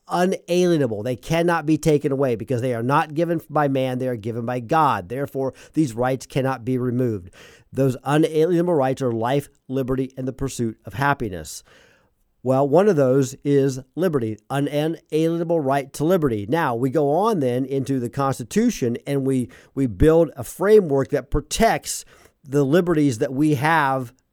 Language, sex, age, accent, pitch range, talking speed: English, male, 50-69, American, 130-160 Hz, 165 wpm